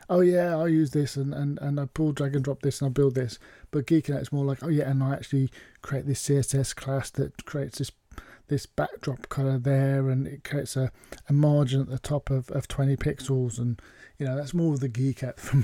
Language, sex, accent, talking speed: English, male, British, 240 wpm